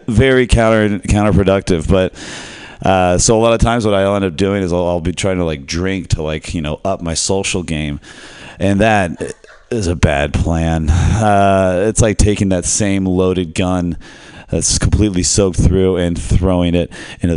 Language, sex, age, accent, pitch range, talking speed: English, male, 30-49, American, 80-105 Hz, 185 wpm